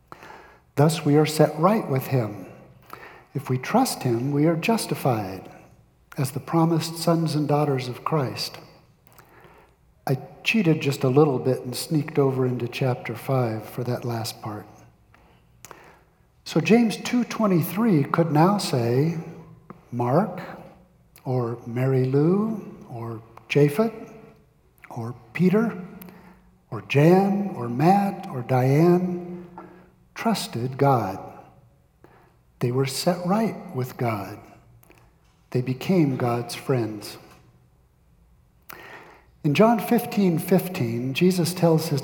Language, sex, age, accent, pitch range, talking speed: English, male, 60-79, American, 125-175 Hz, 110 wpm